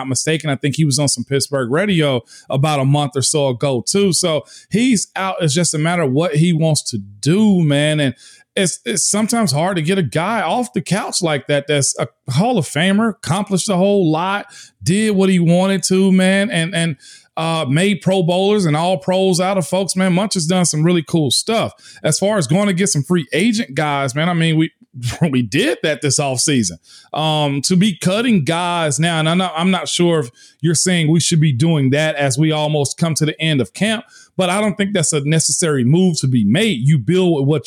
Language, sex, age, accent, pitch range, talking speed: English, male, 40-59, American, 150-190 Hz, 230 wpm